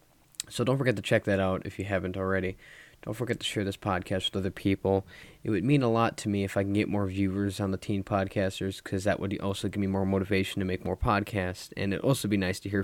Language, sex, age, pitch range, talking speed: English, male, 20-39, 95-115 Hz, 260 wpm